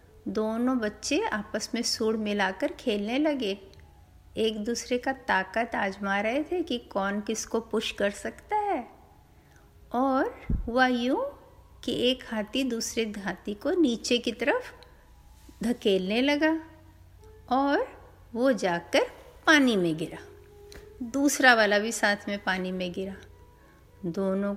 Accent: native